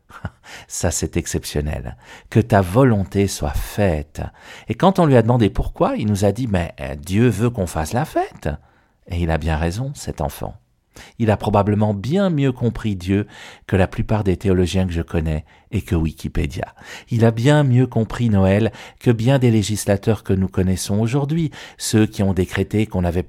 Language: French